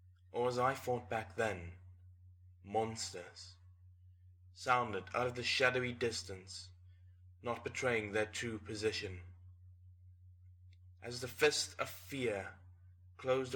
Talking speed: 105 wpm